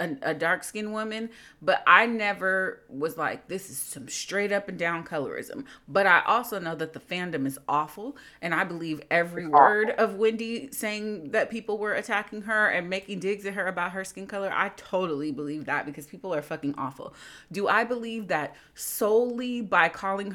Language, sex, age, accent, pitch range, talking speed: English, female, 30-49, American, 165-220 Hz, 190 wpm